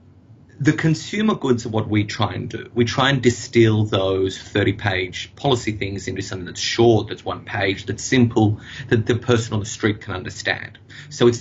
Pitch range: 100-120 Hz